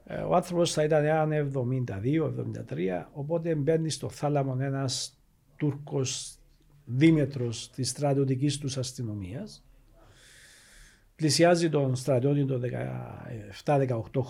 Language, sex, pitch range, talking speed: Greek, male, 130-175 Hz, 85 wpm